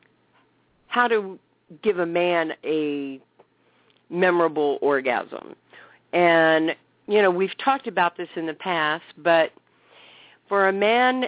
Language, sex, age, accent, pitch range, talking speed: English, female, 50-69, American, 160-195 Hz, 115 wpm